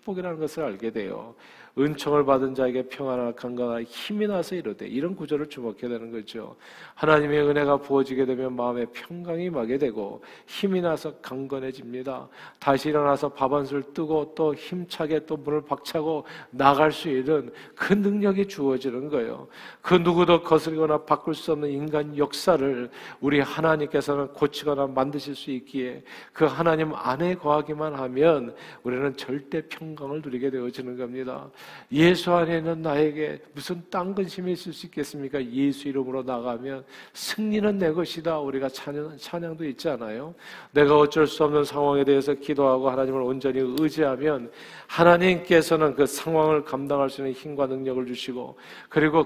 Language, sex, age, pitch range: Korean, male, 40-59, 135-160 Hz